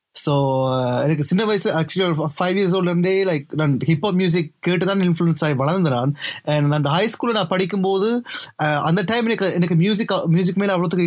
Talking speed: 170 wpm